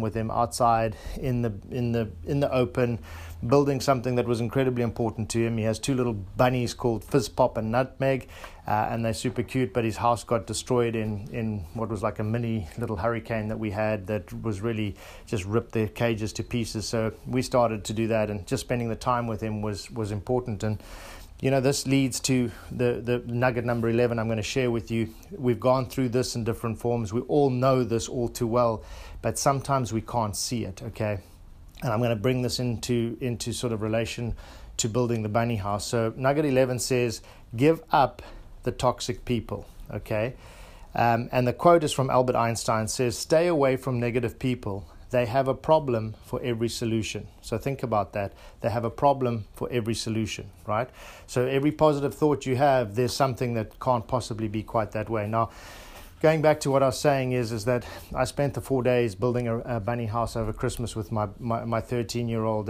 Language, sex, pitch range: English, male, 110-125 Hz